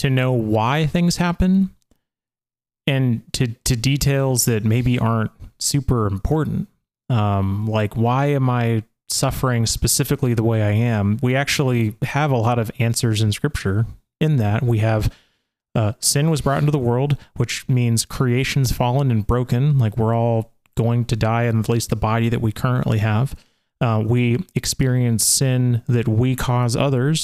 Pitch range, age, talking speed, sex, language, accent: 115-135 Hz, 30-49, 165 wpm, male, English, American